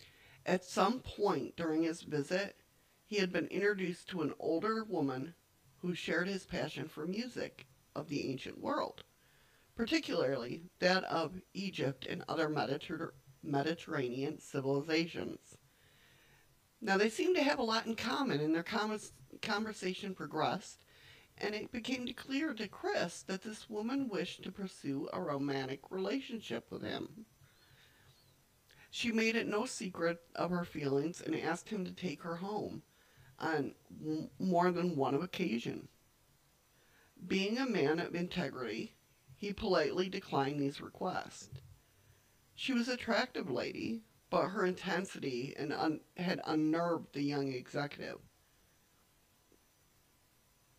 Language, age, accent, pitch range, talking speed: English, 50-69, American, 140-205 Hz, 125 wpm